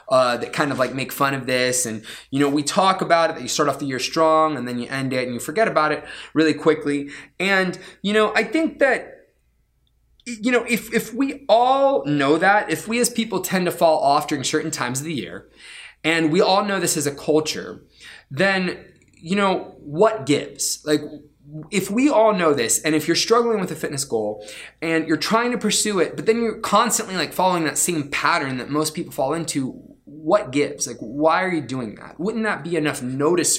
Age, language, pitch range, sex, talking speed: 20-39, English, 130-185 Hz, male, 220 wpm